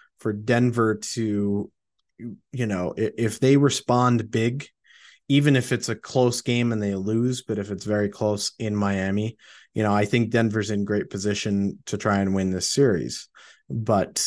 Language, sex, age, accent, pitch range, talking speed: English, male, 30-49, American, 100-120 Hz, 170 wpm